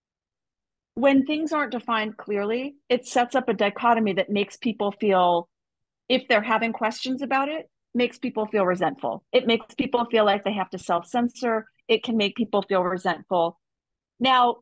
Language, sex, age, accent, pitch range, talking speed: English, female, 40-59, American, 195-255 Hz, 170 wpm